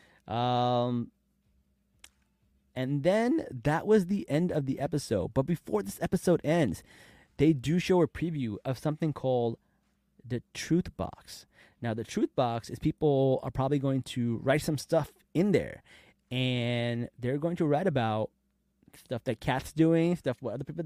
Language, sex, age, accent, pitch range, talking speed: English, male, 30-49, American, 125-165 Hz, 160 wpm